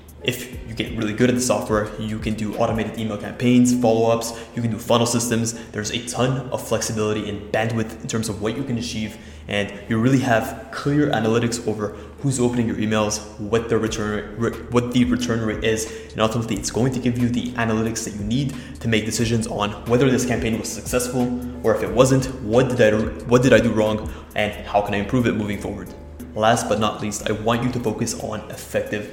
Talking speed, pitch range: 220 wpm, 105-120 Hz